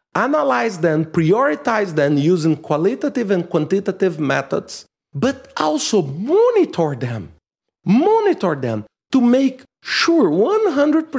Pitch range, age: 150-235 Hz, 40-59